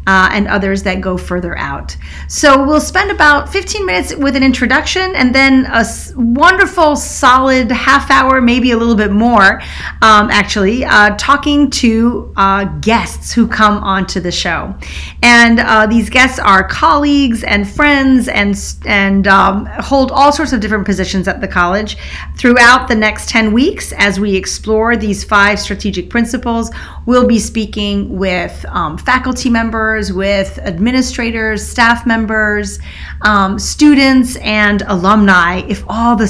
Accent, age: American, 40-59